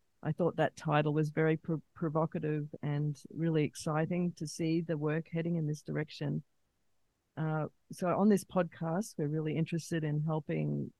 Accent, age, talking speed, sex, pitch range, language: Australian, 40-59, 155 wpm, female, 150-175 Hz, English